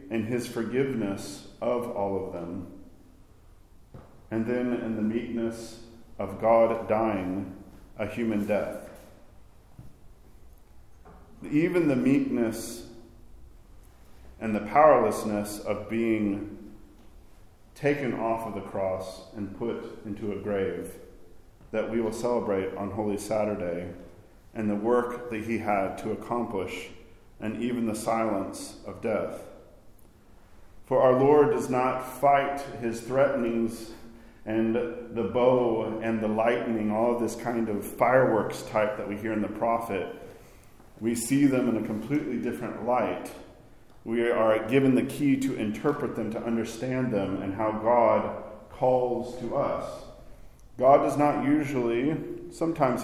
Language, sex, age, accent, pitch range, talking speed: English, male, 40-59, American, 100-120 Hz, 130 wpm